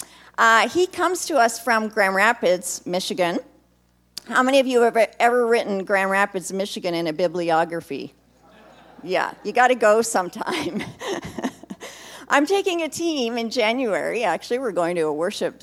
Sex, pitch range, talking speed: female, 170-235 Hz, 155 wpm